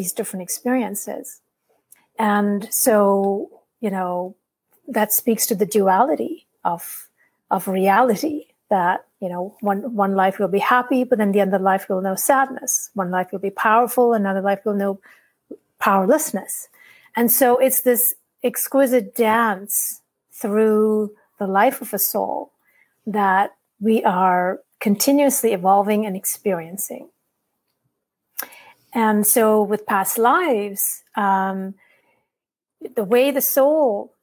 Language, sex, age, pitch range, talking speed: English, female, 40-59, 195-245 Hz, 125 wpm